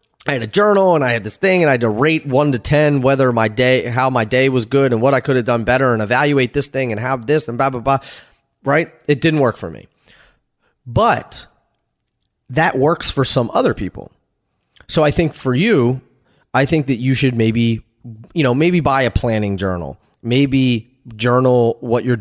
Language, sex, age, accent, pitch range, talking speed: English, male, 30-49, American, 115-145 Hz, 210 wpm